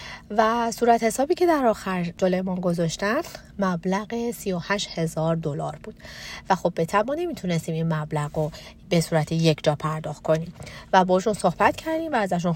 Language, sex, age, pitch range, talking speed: Persian, female, 30-49, 165-230 Hz, 155 wpm